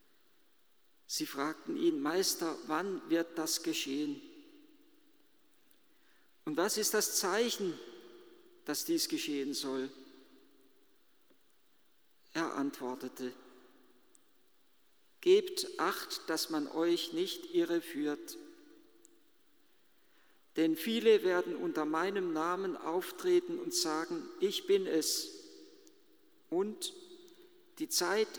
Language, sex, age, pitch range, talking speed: German, male, 50-69, 275-360 Hz, 85 wpm